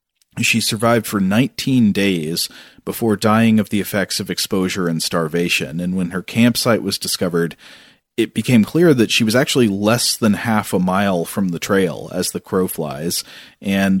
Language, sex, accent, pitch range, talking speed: English, male, American, 95-120 Hz, 170 wpm